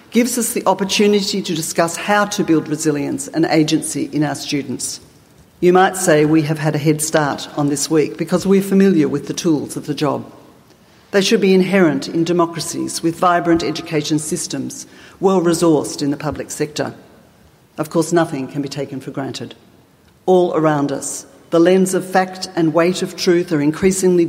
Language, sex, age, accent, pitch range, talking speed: English, female, 50-69, Australian, 155-185 Hz, 180 wpm